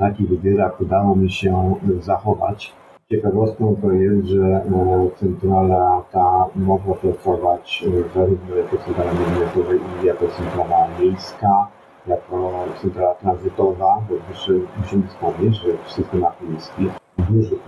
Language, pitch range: Polish, 90-110 Hz